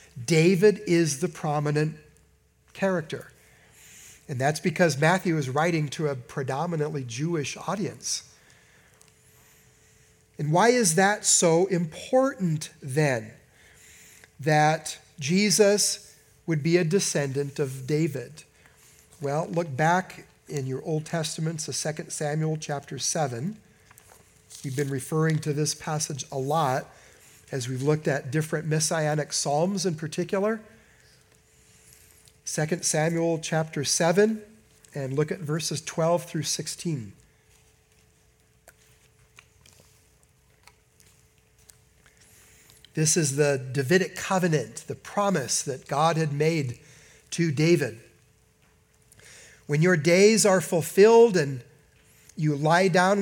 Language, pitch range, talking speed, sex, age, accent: English, 145-180 Hz, 105 wpm, male, 50-69, American